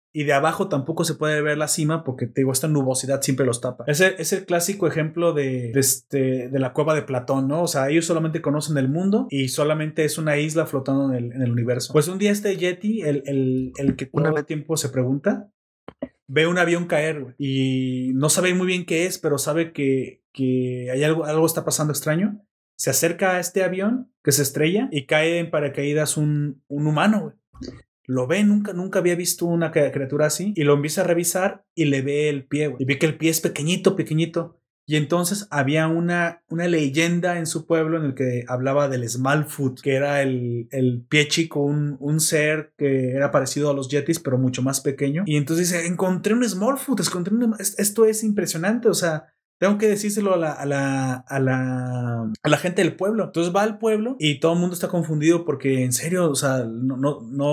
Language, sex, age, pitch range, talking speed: Spanish, male, 30-49, 140-175 Hz, 215 wpm